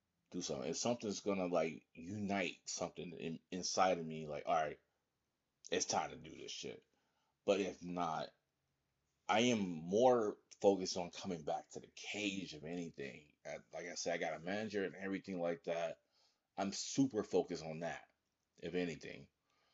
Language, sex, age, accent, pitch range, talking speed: English, male, 30-49, American, 90-120 Hz, 160 wpm